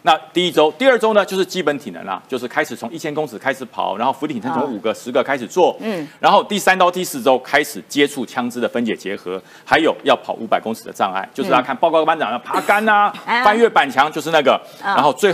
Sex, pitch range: male, 150-215 Hz